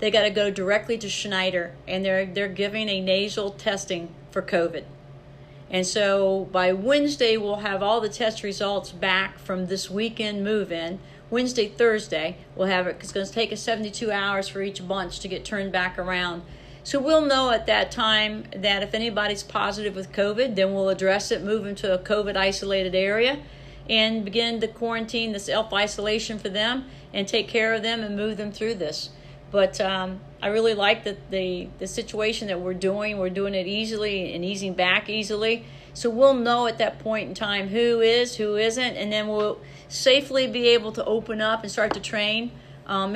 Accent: American